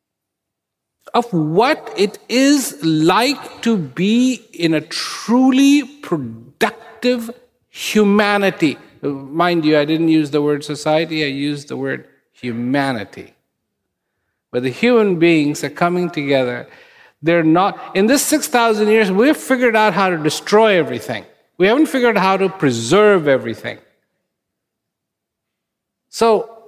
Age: 50-69